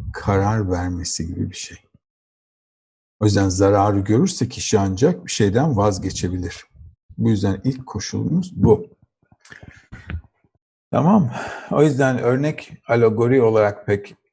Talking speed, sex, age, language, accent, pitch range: 110 wpm, male, 50-69, Turkish, native, 95-125 Hz